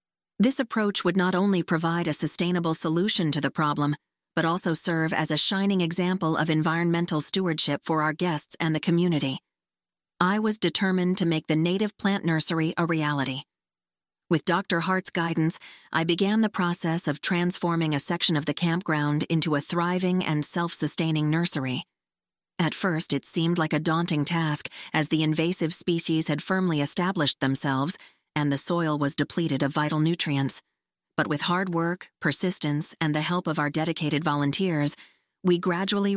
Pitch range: 150-180 Hz